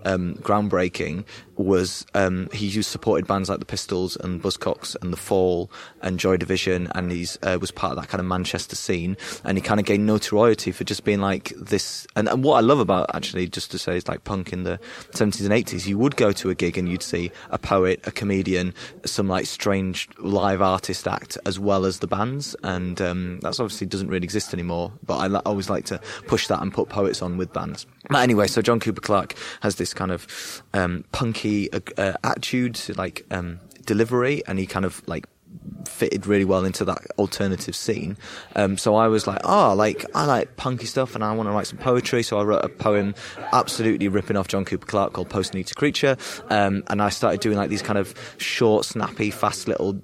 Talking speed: 220 wpm